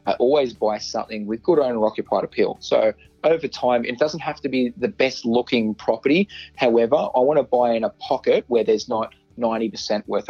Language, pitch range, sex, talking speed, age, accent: English, 105-120 Hz, male, 190 wpm, 20-39, Australian